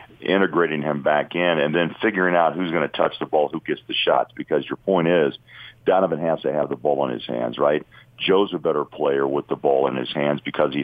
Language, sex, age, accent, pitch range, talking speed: English, male, 50-69, American, 75-90 Hz, 245 wpm